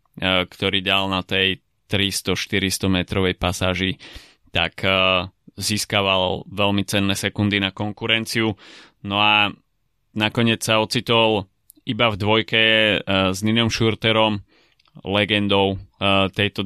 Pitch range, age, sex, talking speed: 95-110 Hz, 20-39, male, 95 wpm